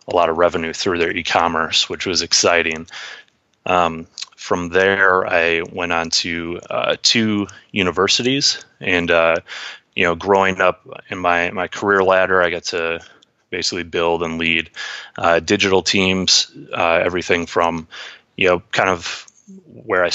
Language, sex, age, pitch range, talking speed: English, male, 30-49, 85-95 Hz, 150 wpm